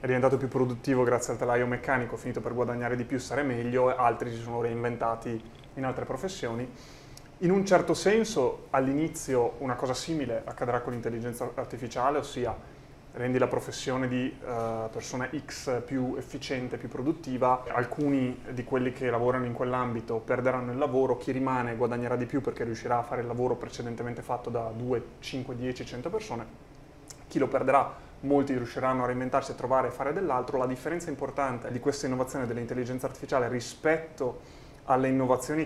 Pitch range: 120-140 Hz